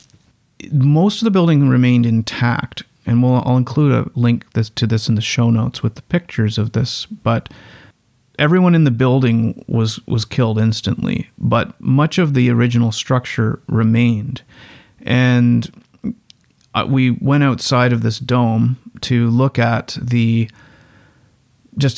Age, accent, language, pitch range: 40-59, American, English, 115-130 Hz